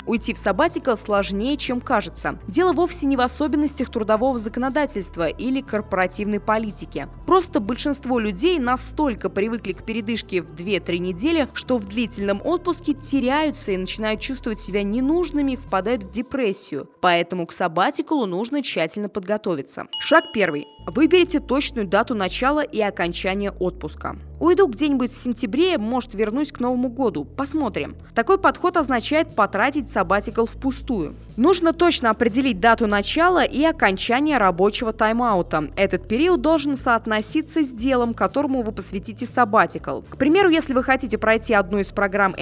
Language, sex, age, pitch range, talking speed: Russian, female, 20-39, 205-280 Hz, 140 wpm